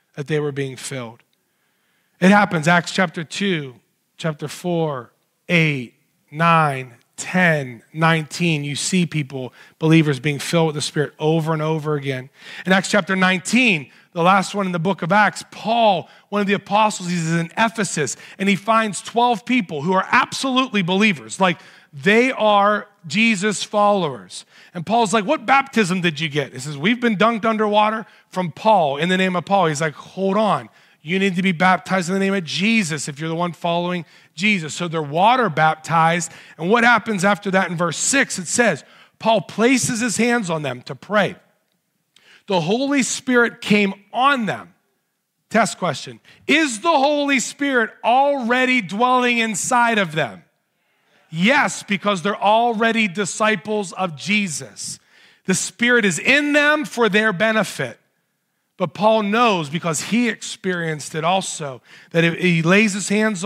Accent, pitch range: American, 165-220 Hz